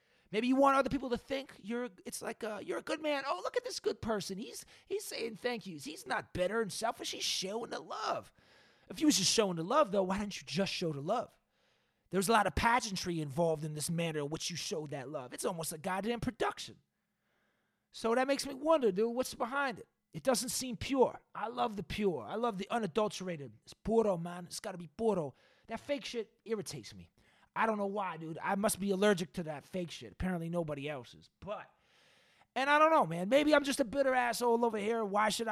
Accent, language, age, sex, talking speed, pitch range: American, English, 30-49, male, 230 wpm, 180-240 Hz